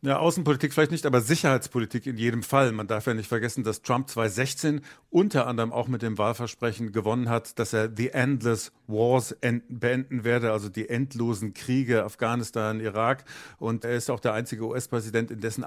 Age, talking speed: 50-69, 180 wpm